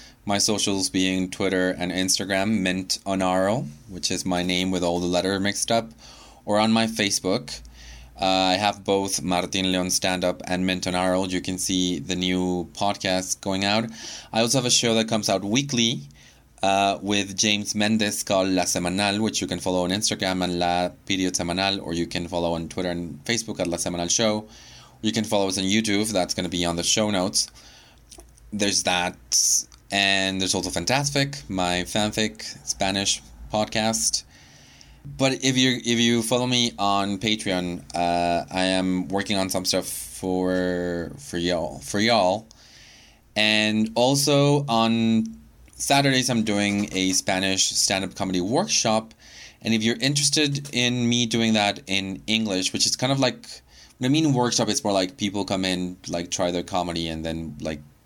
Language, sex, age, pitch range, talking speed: English, male, 20-39, 90-110 Hz, 175 wpm